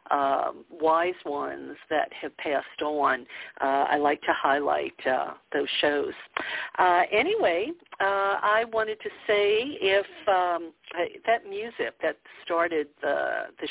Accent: American